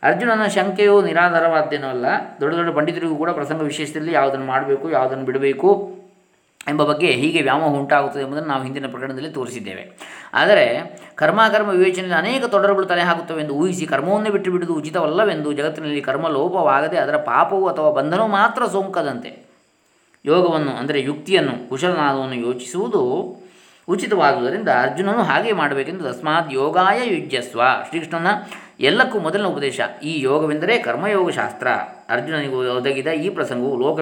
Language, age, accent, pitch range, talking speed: Kannada, 20-39, native, 140-190 Hz, 120 wpm